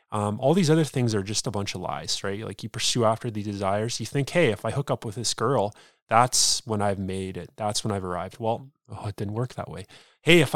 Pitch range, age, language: 105-130 Hz, 20-39, English